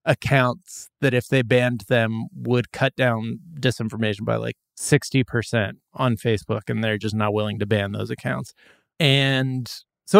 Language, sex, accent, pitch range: English, male, American, 115-145 Hz